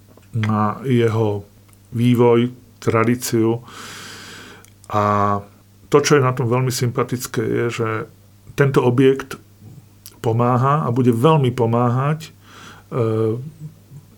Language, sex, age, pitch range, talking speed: Slovak, male, 40-59, 110-125 Hz, 95 wpm